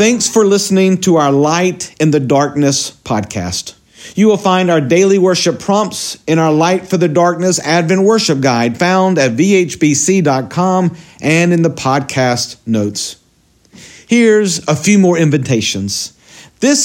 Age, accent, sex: 50-69, American, male